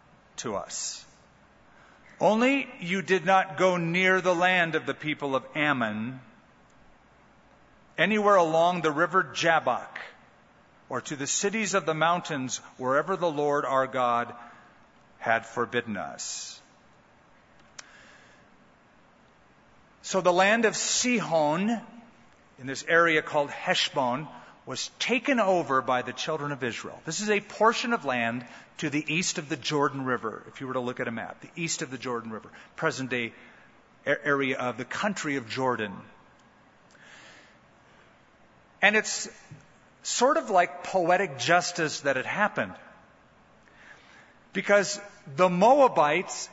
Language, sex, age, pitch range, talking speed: English, male, 40-59, 135-195 Hz, 130 wpm